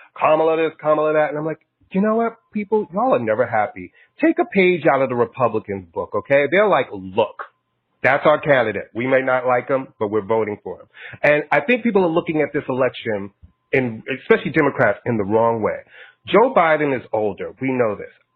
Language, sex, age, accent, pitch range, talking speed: English, male, 30-49, American, 125-175 Hz, 205 wpm